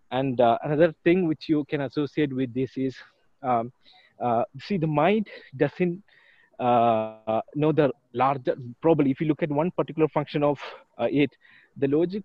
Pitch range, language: 130-170 Hz, English